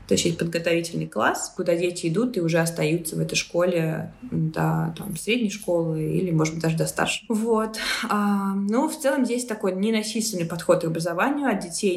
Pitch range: 160-195 Hz